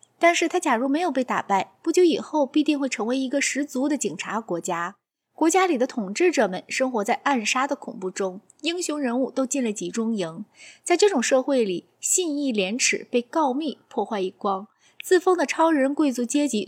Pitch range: 210-280 Hz